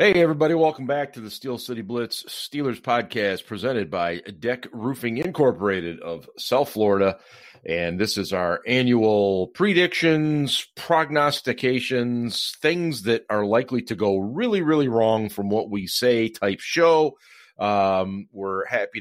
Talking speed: 140 wpm